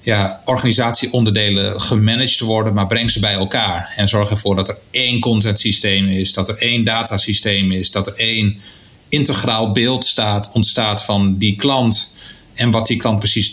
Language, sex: Dutch, male